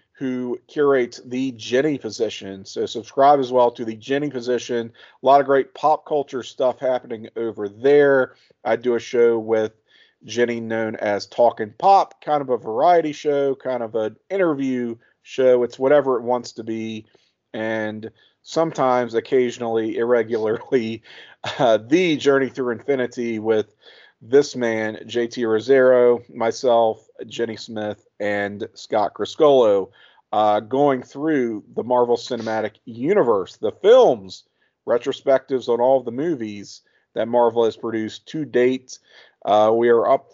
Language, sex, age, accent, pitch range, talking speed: English, male, 40-59, American, 110-140 Hz, 140 wpm